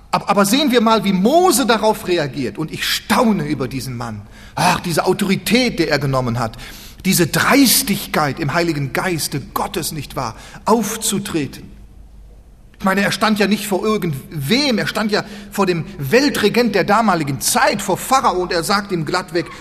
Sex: male